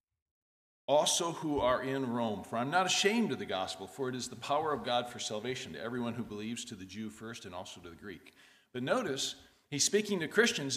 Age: 50-69